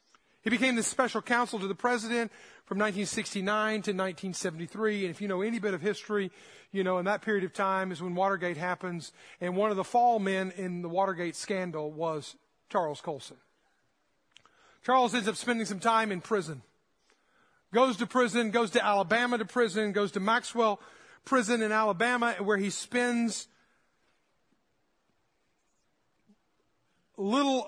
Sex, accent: male, American